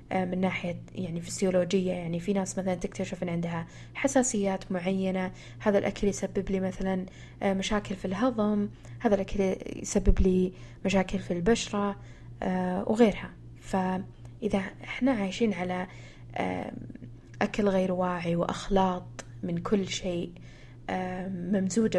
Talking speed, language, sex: 110 wpm, Arabic, female